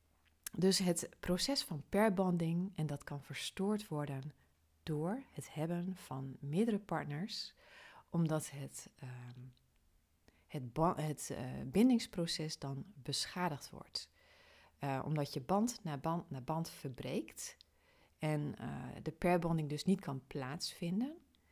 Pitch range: 135-175 Hz